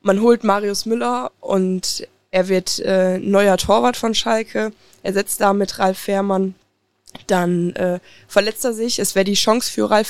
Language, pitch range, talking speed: German, 180-215 Hz, 170 wpm